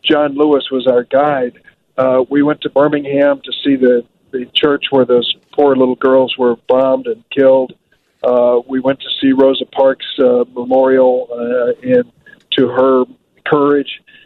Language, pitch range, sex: English, 135-155 Hz, male